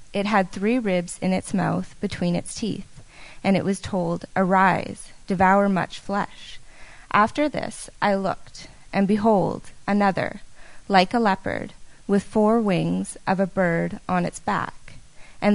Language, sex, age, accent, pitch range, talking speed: English, female, 20-39, American, 190-215 Hz, 145 wpm